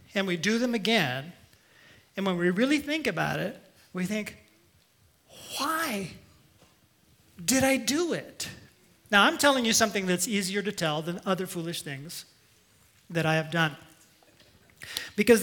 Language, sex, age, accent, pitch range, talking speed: English, male, 40-59, American, 160-230 Hz, 145 wpm